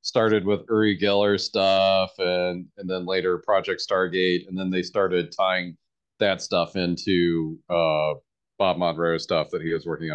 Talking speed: 160 wpm